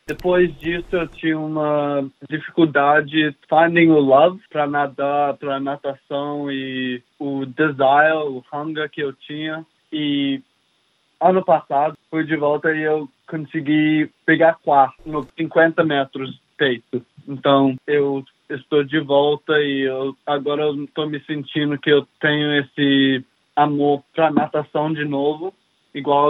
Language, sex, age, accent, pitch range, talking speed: Portuguese, male, 20-39, Brazilian, 140-160 Hz, 135 wpm